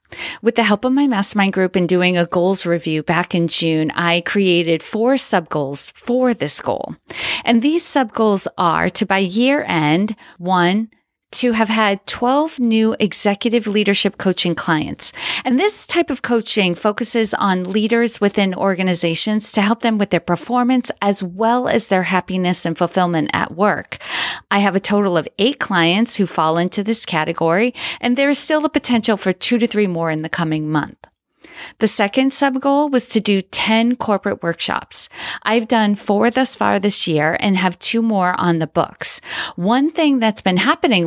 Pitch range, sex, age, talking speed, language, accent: 175-235 Hz, female, 40-59, 180 wpm, English, American